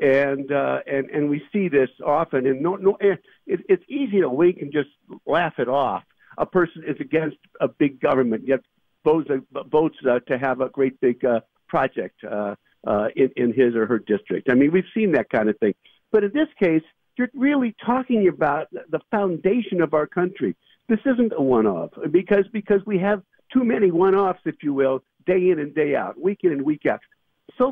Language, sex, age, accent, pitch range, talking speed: English, male, 60-79, American, 135-200 Hz, 205 wpm